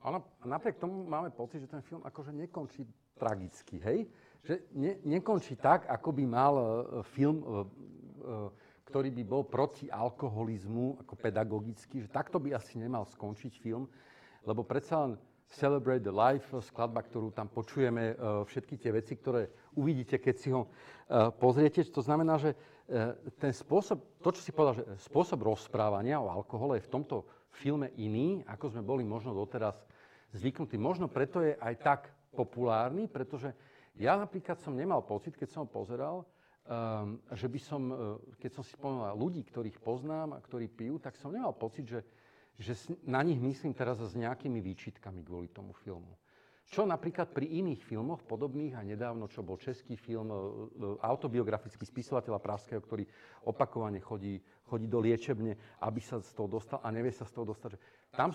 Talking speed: 170 wpm